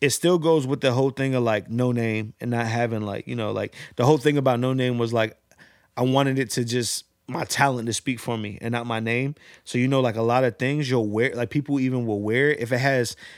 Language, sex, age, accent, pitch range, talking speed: English, male, 20-39, American, 115-140 Hz, 265 wpm